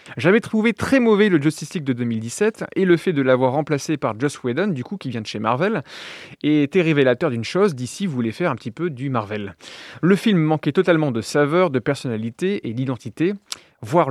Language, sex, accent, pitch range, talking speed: French, male, French, 130-180 Hz, 210 wpm